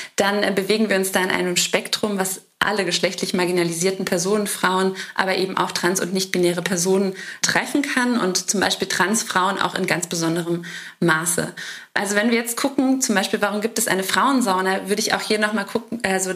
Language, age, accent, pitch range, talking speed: German, 20-39, German, 185-215 Hz, 185 wpm